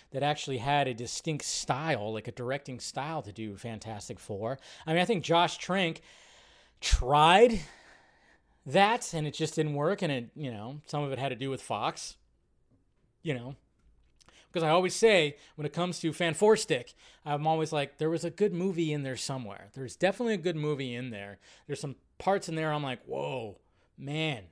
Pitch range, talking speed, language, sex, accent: 130-170 Hz, 190 wpm, English, male, American